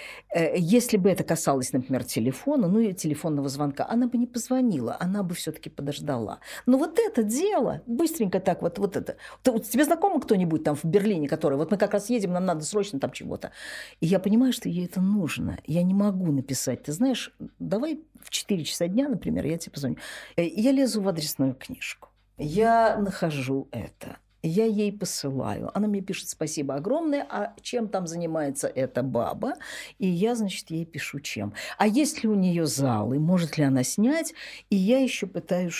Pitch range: 150-225 Hz